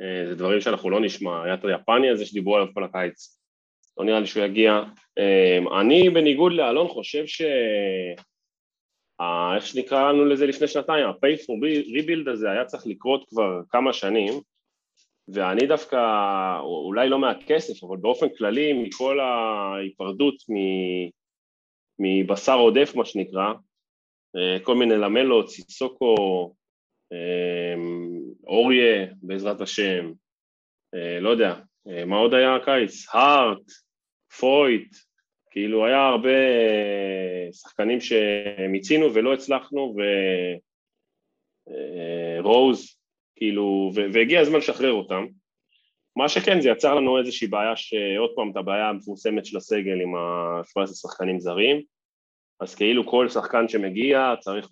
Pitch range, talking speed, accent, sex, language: 90-130 Hz, 110 wpm, Italian, male, Hebrew